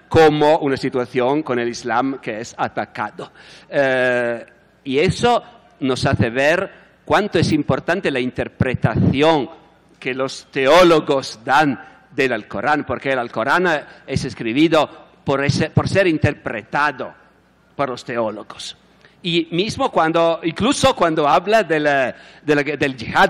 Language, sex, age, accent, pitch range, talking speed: Italian, male, 50-69, native, 145-195 Hz, 130 wpm